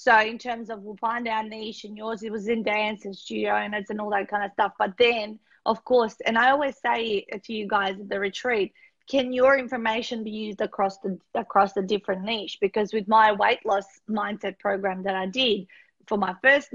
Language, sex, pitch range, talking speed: English, female, 200-235 Hz, 220 wpm